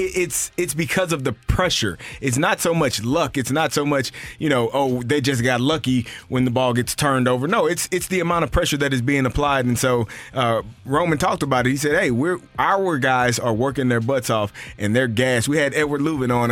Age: 30-49